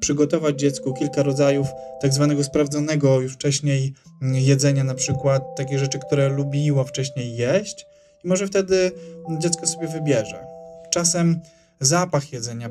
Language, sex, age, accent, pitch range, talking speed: Polish, male, 20-39, native, 130-155 Hz, 125 wpm